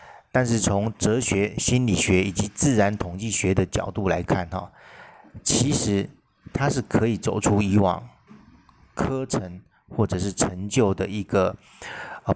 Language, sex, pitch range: Chinese, male, 95-110 Hz